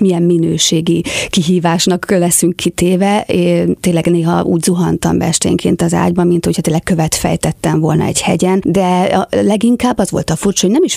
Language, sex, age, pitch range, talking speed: Hungarian, female, 30-49, 170-195 Hz, 160 wpm